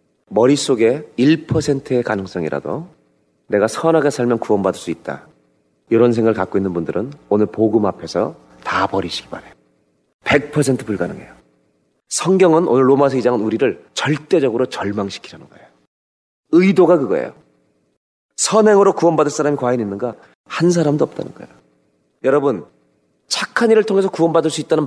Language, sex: Korean, male